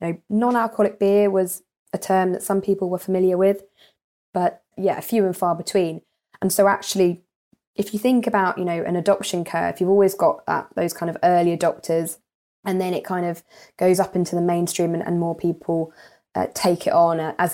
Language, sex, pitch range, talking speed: English, female, 170-195 Hz, 210 wpm